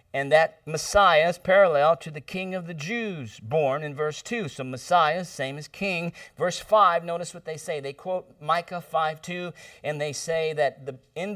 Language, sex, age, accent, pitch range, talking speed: English, male, 50-69, American, 130-170 Hz, 190 wpm